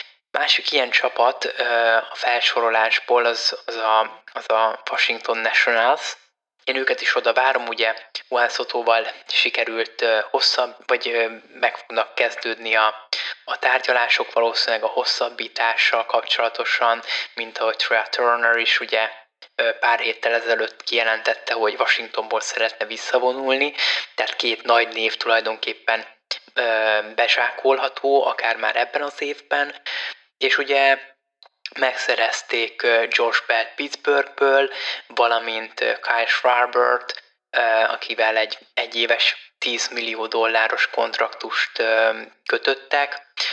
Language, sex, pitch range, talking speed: Hungarian, male, 115-130 Hz, 105 wpm